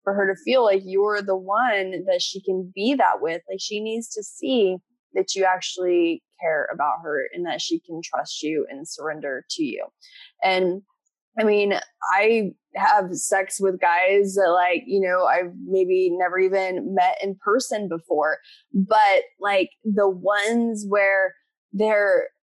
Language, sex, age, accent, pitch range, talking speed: English, female, 20-39, American, 185-270 Hz, 165 wpm